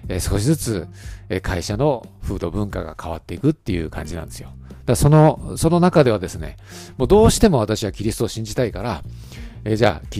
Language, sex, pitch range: Japanese, male, 90-125 Hz